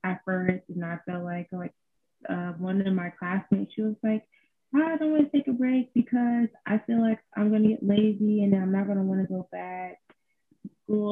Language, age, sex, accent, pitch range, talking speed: English, 20-39, female, American, 170-210 Hz, 215 wpm